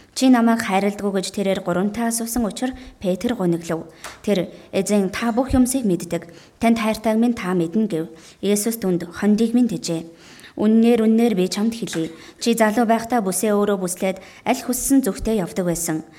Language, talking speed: English, 155 wpm